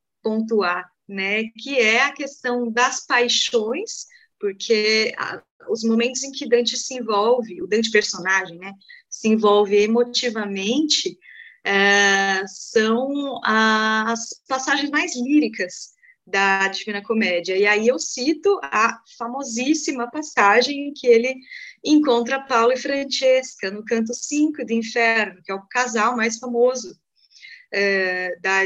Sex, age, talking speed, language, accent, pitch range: female, 20-39, 125 wpm, Portuguese, Brazilian, 215-285 Hz